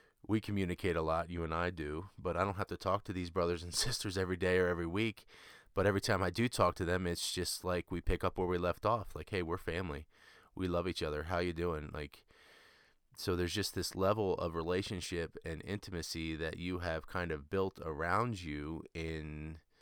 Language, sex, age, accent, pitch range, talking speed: English, male, 20-39, American, 85-100 Hz, 220 wpm